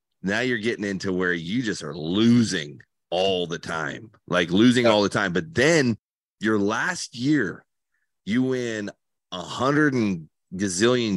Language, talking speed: English, 150 wpm